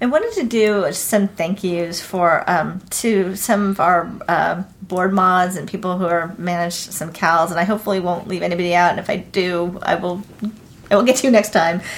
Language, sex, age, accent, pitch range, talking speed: English, female, 40-59, American, 175-205 Hz, 215 wpm